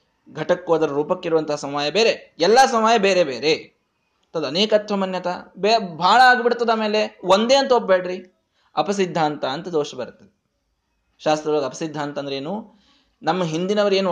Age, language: 20-39, Kannada